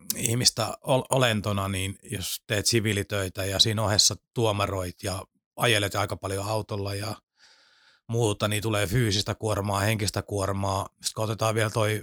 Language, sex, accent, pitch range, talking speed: Finnish, male, native, 100-115 Hz, 135 wpm